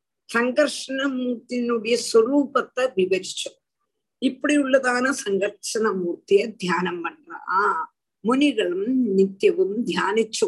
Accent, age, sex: native, 50-69, female